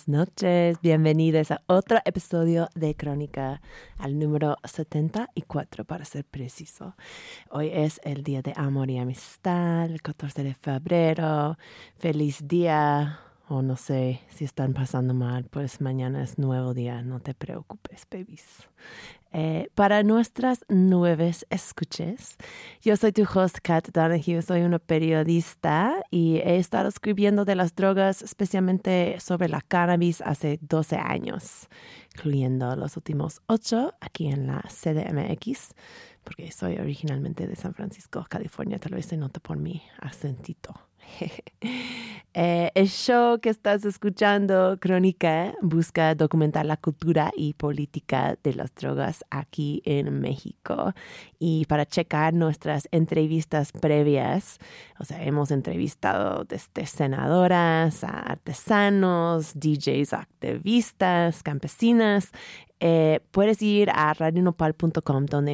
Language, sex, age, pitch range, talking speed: Spanish, female, 30-49, 145-180 Hz, 125 wpm